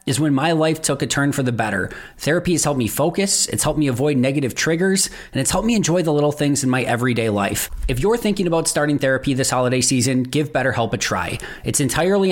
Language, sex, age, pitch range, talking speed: English, male, 30-49, 125-170 Hz, 235 wpm